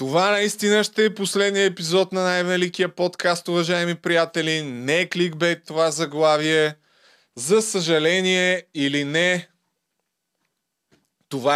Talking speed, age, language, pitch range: 115 wpm, 20-39, Bulgarian, 165-195 Hz